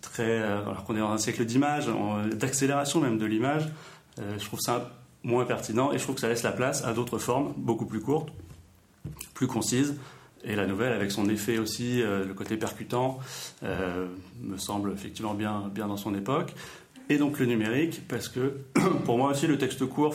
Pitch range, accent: 105-130 Hz, French